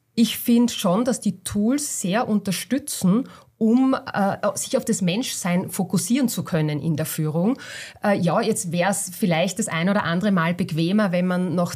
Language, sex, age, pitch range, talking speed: German, female, 30-49, 175-225 Hz, 180 wpm